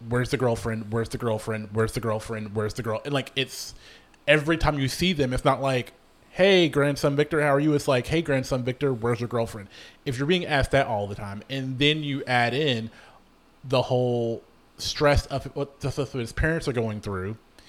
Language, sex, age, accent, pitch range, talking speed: English, male, 30-49, American, 115-140 Hz, 205 wpm